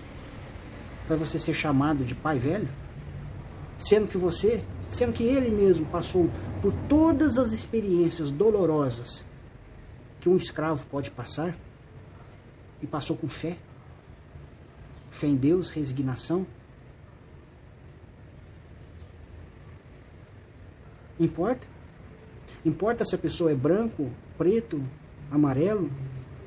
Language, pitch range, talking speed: Portuguese, 125-170 Hz, 95 wpm